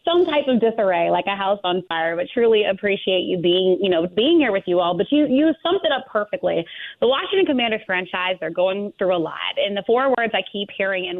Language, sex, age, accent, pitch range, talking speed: English, female, 30-49, American, 175-225 Hz, 240 wpm